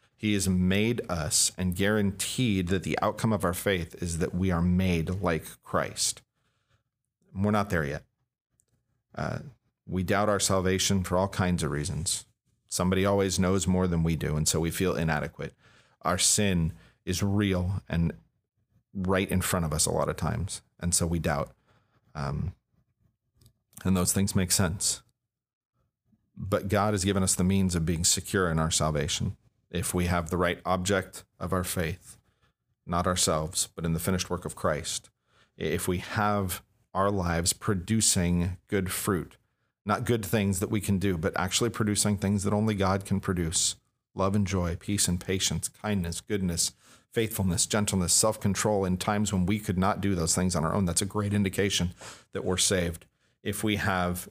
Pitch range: 90-105 Hz